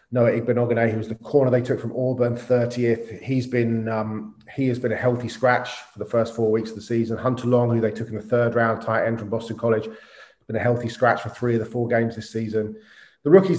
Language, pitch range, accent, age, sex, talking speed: English, 110-125 Hz, British, 30-49, male, 245 wpm